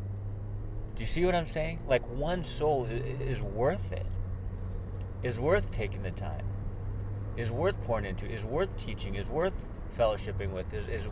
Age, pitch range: 30-49, 90-120 Hz